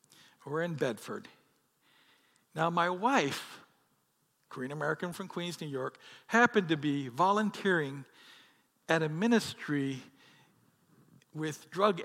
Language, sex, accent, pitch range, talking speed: English, male, American, 150-205 Hz, 105 wpm